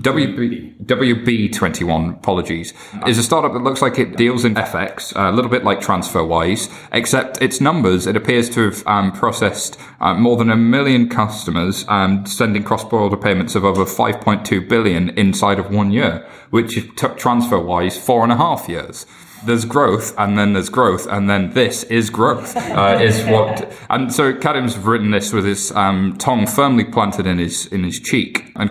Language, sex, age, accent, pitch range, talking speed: English, male, 20-39, British, 95-115 Hz, 175 wpm